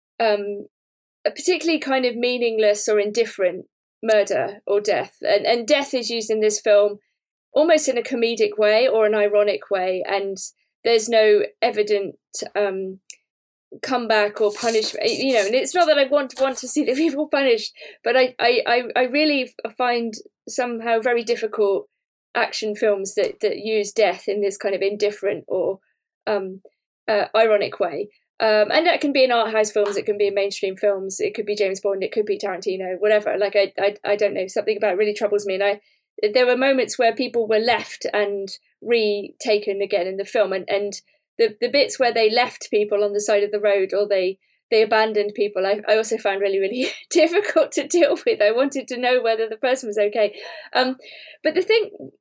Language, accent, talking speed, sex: English, British, 195 wpm, female